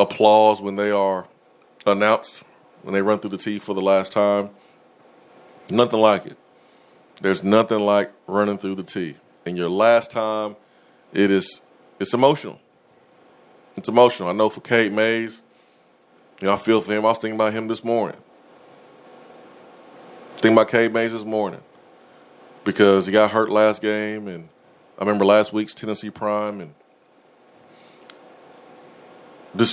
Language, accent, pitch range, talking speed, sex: English, American, 105-125 Hz, 150 wpm, male